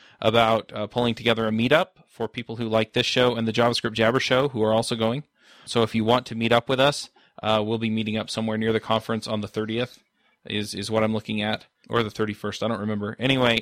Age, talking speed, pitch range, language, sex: 20-39, 240 wpm, 110-120 Hz, English, male